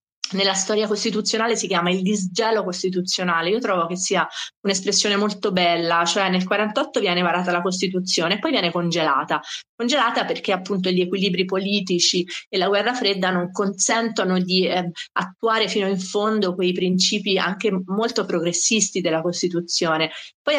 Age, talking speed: 30-49, 150 wpm